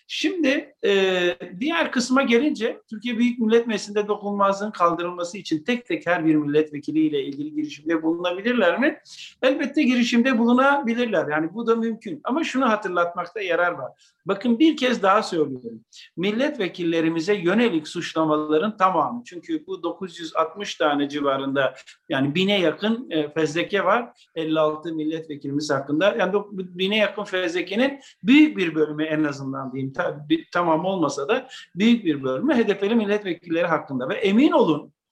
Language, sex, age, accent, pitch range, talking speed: Turkish, male, 50-69, native, 165-235 Hz, 130 wpm